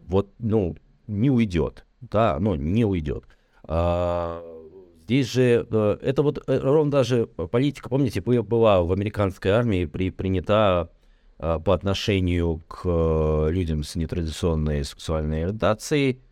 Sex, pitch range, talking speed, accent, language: male, 85-120 Hz, 105 wpm, native, Russian